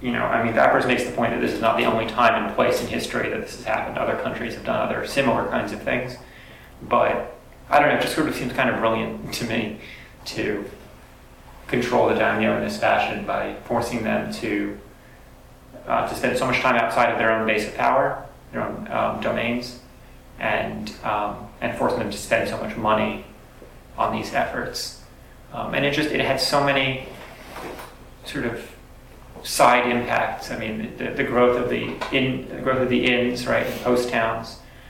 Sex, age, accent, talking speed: male, 30-49, American, 200 wpm